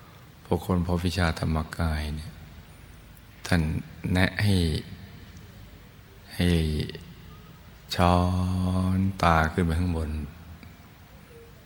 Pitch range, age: 80-90 Hz, 20-39